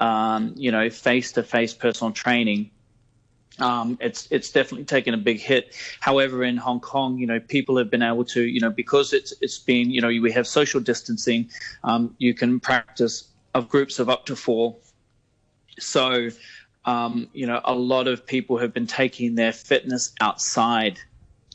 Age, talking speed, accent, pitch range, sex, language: 20-39, 165 wpm, Australian, 115-125 Hz, male, English